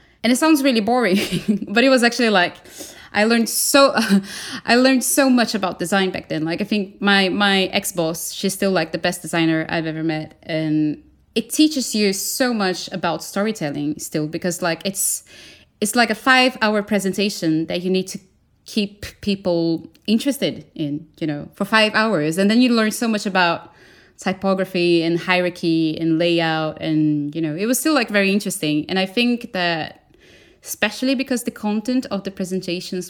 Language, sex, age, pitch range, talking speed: English, female, 20-39, 170-220 Hz, 180 wpm